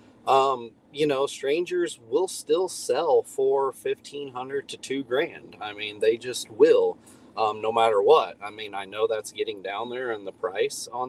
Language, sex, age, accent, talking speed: English, male, 30-49, American, 180 wpm